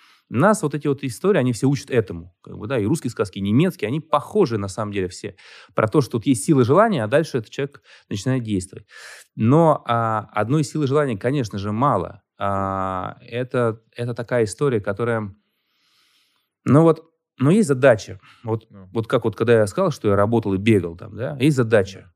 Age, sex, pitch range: 20-39, male, 100-135 Hz